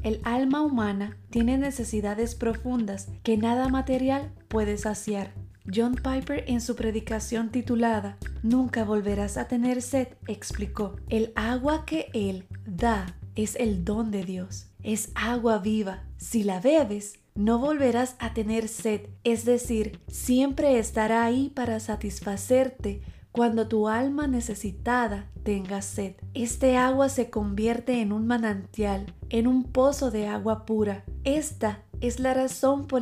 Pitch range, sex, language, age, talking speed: 210-250 Hz, female, English, 30-49, 135 wpm